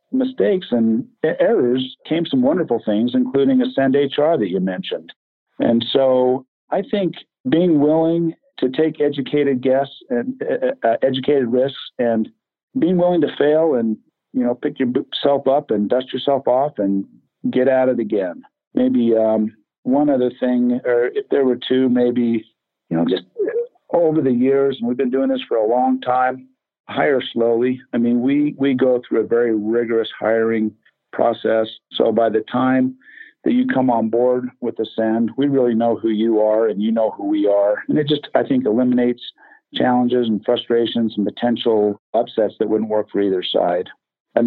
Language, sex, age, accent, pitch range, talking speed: English, male, 50-69, American, 110-135 Hz, 175 wpm